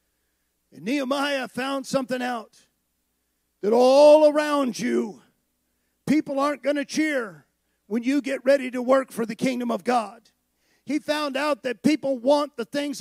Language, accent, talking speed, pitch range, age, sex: English, American, 150 wpm, 250-310 Hz, 40-59, male